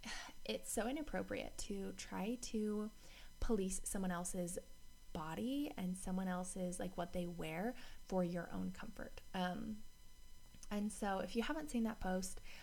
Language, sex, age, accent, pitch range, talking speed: English, female, 20-39, American, 175-225 Hz, 145 wpm